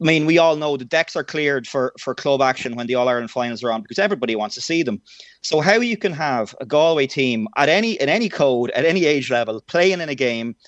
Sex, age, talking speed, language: male, 30-49, 265 wpm, English